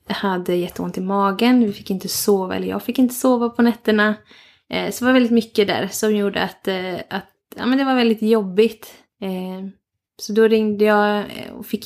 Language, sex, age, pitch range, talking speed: Swedish, female, 20-39, 195-225 Hz, 190 wpm